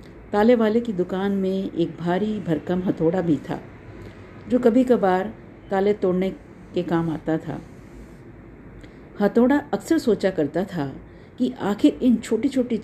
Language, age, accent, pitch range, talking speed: Hindi, 50-69, native, 170-240 Hz, 140 wpm